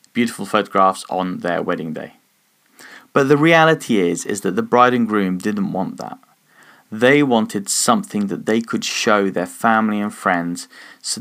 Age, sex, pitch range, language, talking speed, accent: 30-49, male, 110-140 Hz, English, 165 wpm, British